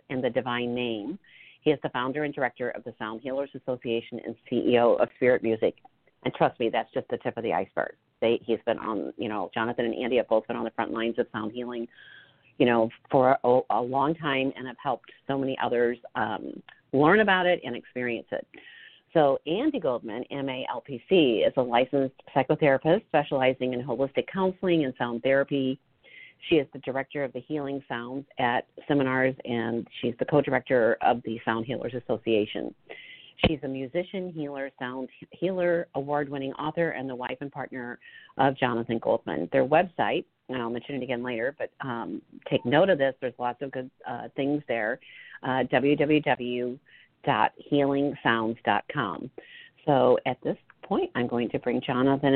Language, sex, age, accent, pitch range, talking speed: English, female, 40-59, American, 120-145 Hz, 170 wpm